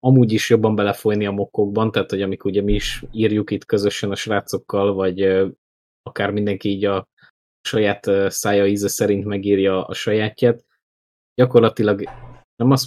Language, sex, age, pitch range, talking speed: Hungarian, male, 20-39, 95-105 Hz, 150 wpm